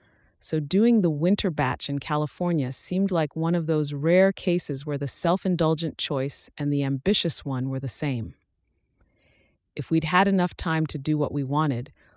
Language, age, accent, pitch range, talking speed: English, 30-49, American, 130-160 Hz, 175 wpm